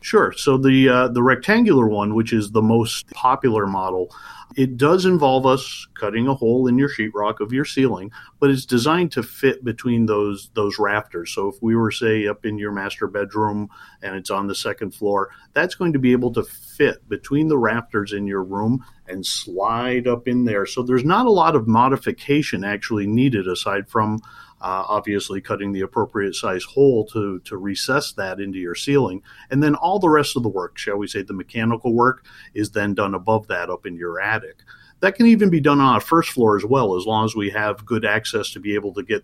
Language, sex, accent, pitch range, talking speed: English, male, American, 100-130 Hz, 215 wpm